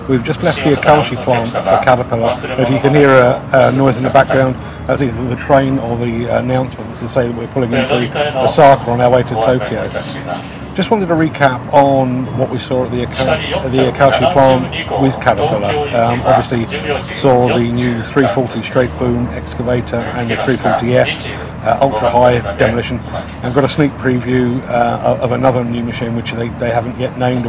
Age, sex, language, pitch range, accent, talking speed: 50-69, male, English, 120-140 Hz, British, 185 wpm